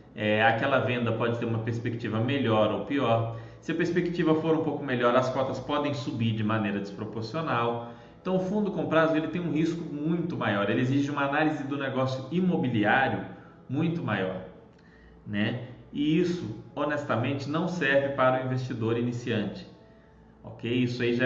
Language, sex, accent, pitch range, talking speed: Portuguese, male, Brazilian, 115-150 Hz, 155 wpm